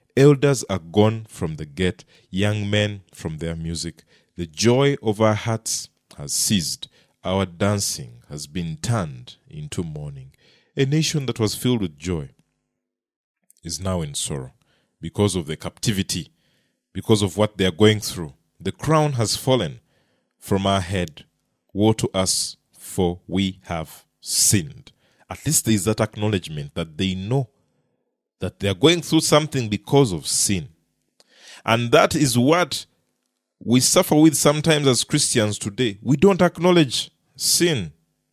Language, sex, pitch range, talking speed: English, male, 95-140 Hz, 145 wpm